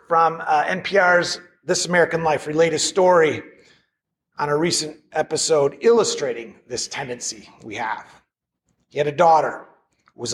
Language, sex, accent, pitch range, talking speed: English, male, American, 160-210 Hz, 135 wpm